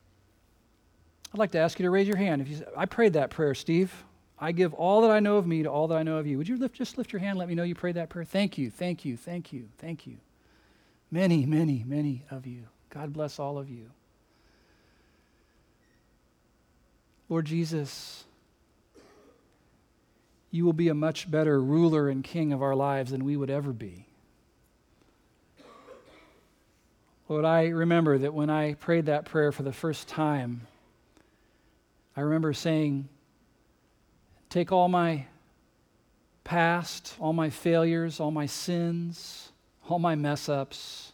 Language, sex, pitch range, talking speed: English, male, 140-170 Hz, 165 wpm